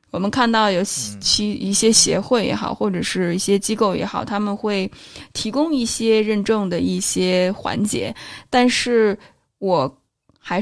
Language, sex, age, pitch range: Chinese, female, 20-39, 190-235 Hz